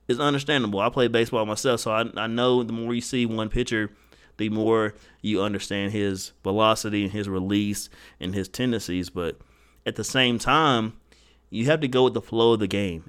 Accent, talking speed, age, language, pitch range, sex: American, 195 wpm, 30-49, English, 100-130 Hz, male